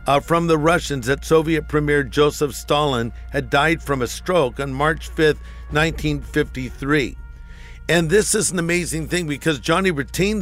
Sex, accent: male, American